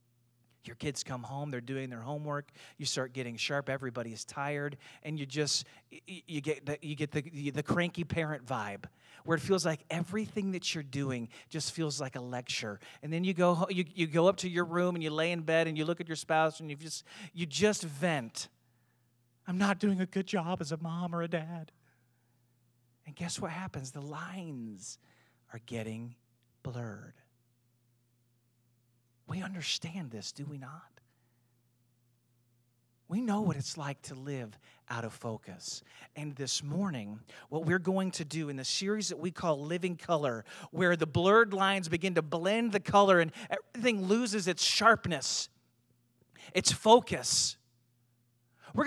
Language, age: English, 40-59